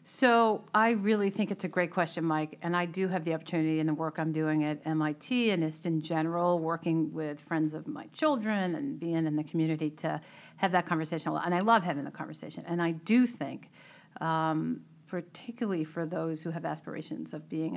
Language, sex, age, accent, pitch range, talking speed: English, female, 40-59, American, 160-185 Hz, 205 wpm